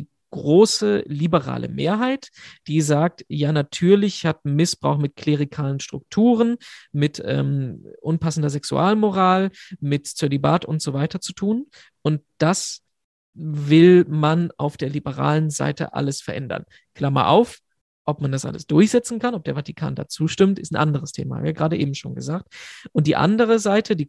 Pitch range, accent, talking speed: 150-185 Hz, German, 155 wpm